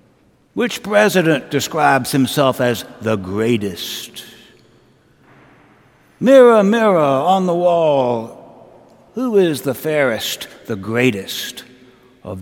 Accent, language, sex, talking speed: American, English, male, 90 wpm